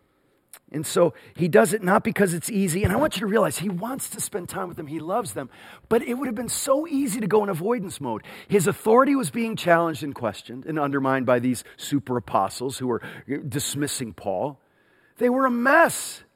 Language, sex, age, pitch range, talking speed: English, male, 40-59, 155-240 Hz, 215 wpm